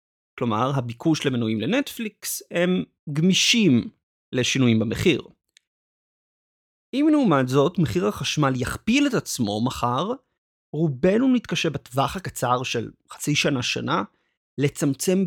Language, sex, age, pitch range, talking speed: Hebrew, male, 30-49, 125-160 Hz, 100 wpm